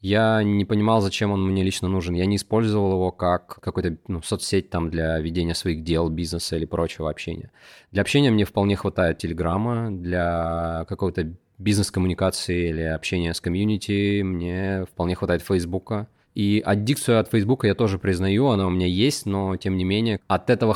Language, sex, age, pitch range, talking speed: Russian, male, 20-39, 90-110 Hz, 175 wpm